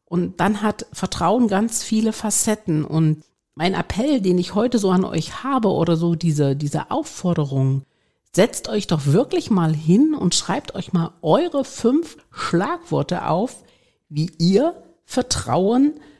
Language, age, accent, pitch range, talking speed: German, 50-69, German, 160-225 Hz, 145 wpm